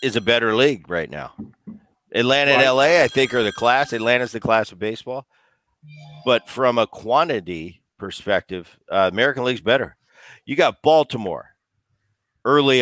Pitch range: 105-135 Hz